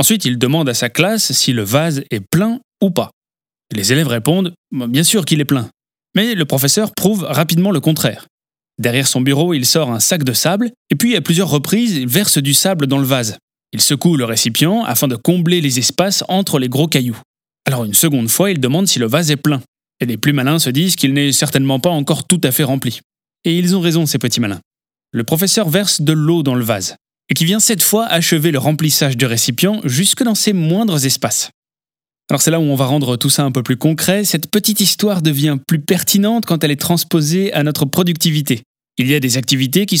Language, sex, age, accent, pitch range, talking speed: French, male, 20-39, French, 135-180 Hz, 230 wpm